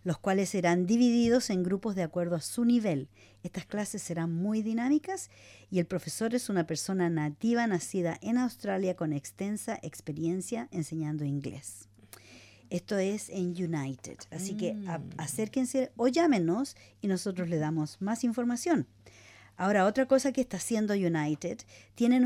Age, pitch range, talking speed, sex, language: 50-69, 160-210 Hz, 145 wpm, female, English